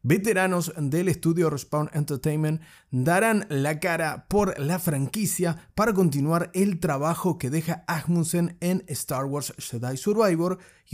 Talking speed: 130 wpm